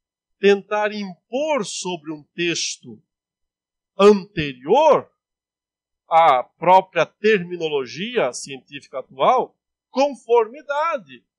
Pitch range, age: 165-235 Hz, 50-69